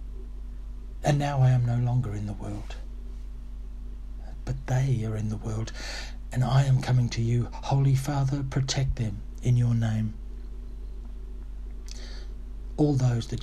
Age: 60-79